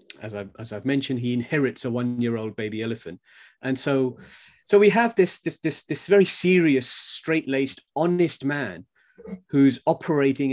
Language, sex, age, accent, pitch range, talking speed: English, male, 40-59, British, 115-140 Hz, 155 wpm